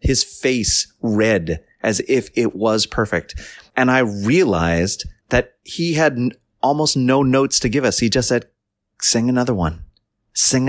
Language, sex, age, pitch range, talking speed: English, male, 30-49, 105-145 Hz, 155 wpm